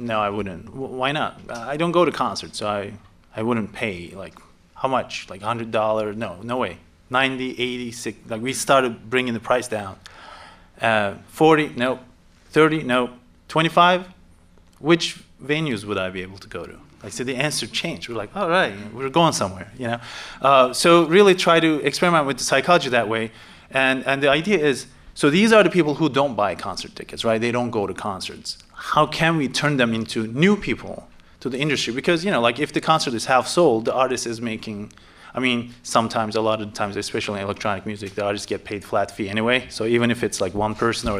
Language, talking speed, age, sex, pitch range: English, 220 wpm, 30-49, male, 105-135 Hz